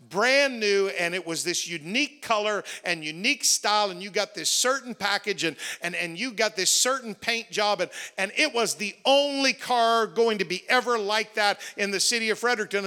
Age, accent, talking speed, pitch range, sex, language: 50-69, American, 205 wpm, 200-265 Hz, male, English